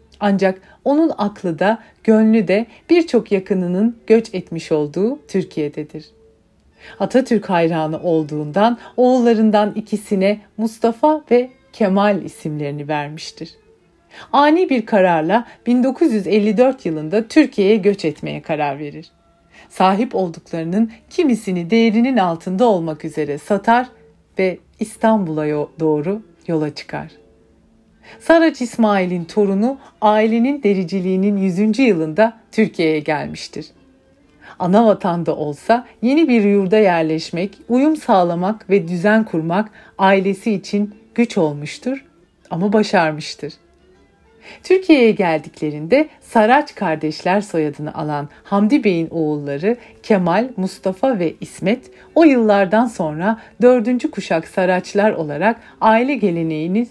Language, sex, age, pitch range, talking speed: Turkish, female, 40-59, 165-230 Hz, 100 wpm